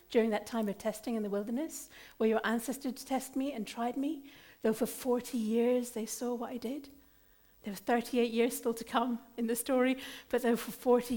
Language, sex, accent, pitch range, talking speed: English, female, British, 205-300 Hz, 210 wpm